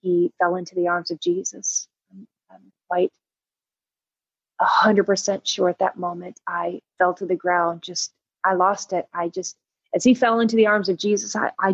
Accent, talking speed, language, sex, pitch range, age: American, 180 wpm, English, female, 190-225 Hz, 30-49